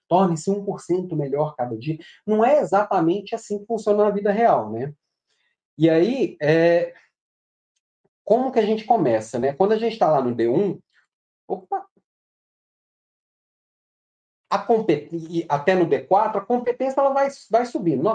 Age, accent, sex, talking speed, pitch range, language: 40-59, Brazilian, male, 145 wpm, 170-220 Hz, Portuguese